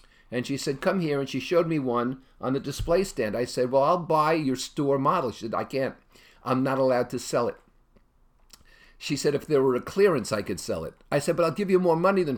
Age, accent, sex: 50-69, American, male